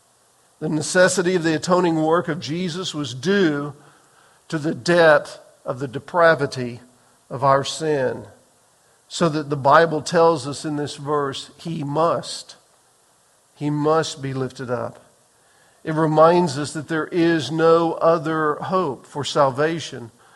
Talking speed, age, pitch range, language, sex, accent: 135 wpm, 50-69, 145-175 Hz, English, male, American